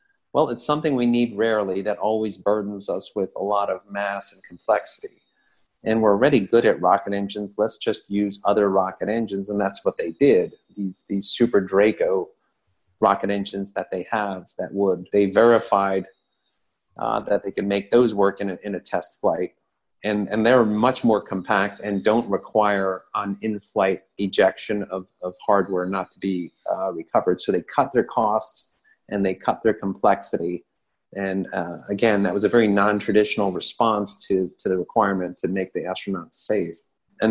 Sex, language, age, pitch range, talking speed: male, English, 40-59, 95-110 Hz, 175 wpm